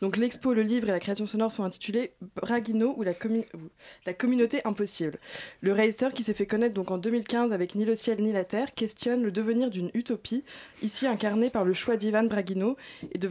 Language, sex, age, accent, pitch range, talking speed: French, female, 20-39, French, 195-230 Hz, 230 wpm